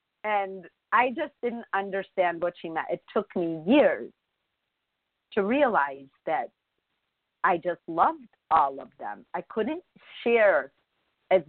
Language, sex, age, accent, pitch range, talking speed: English, female, 50-69, American, 175-255 Hz, 130 wpm